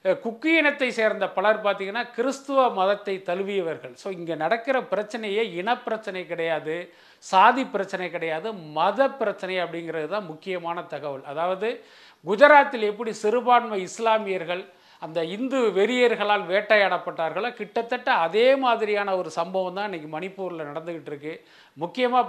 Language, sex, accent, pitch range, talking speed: Tamil, male, native, 185-235 Hz, 115 wpm